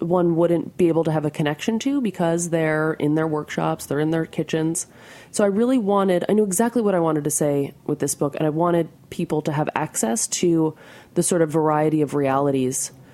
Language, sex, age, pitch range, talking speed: English, female, 30-49, 145-185 Hz, 215 wpm